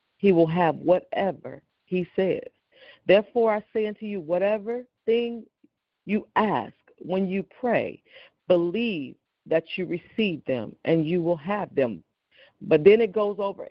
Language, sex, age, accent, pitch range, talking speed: English, female, 40-59, American, 170-225 Hz, 145 wpm